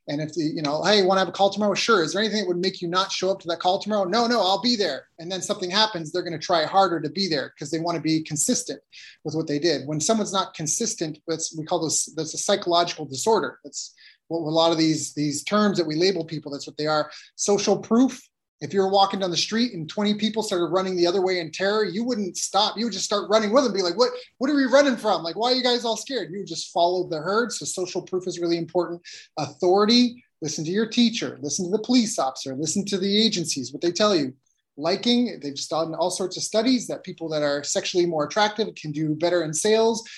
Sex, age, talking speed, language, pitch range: male, 30-49, 260 wpm, English, 160-205 Hz